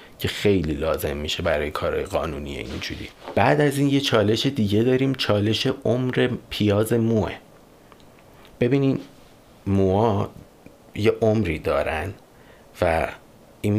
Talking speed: 115 wpm